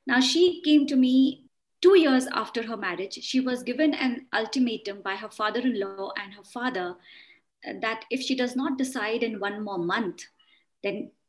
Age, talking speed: 20-39, 170 wpm